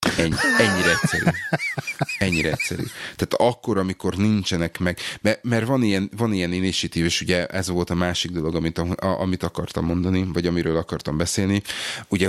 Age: 30-49